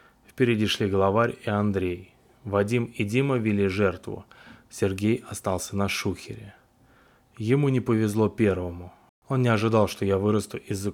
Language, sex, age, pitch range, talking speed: Russian, male, 20-39, 95-115 Hz, 135 wpm